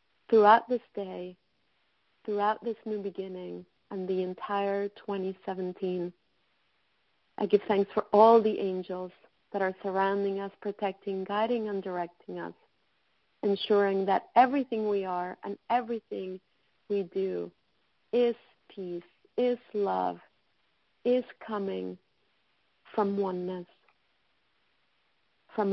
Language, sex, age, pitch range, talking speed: English, female, 40-59, 190-210 Hz, 105 wpm